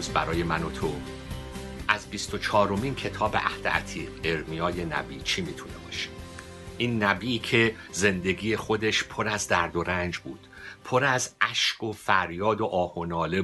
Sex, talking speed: male, 145 wpm